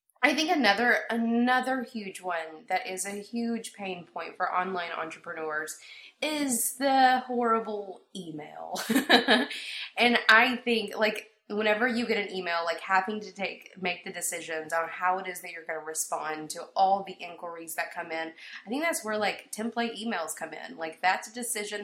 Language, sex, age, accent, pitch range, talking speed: English, female, 20-39, American, 170-215 Hz, 175 wpm